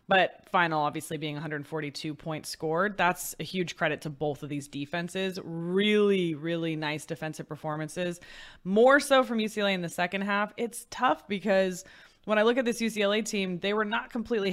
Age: 20-39